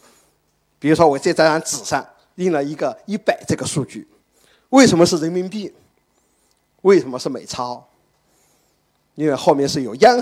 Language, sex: Chinese, male